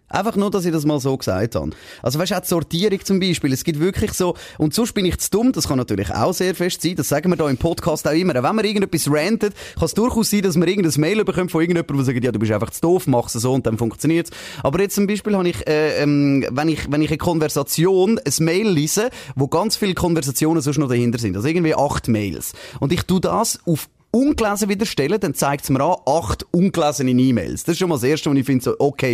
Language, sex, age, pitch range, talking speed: German, male, 30-49, 145-185 Hz, 265 wpm